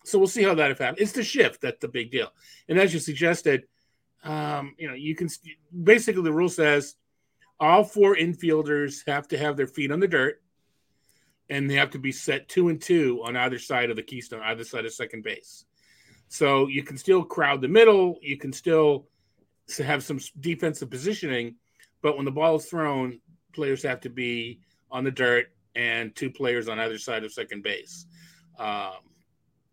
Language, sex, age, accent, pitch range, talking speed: English, male, 30-49, American, 130-170 Hz, 190 wpm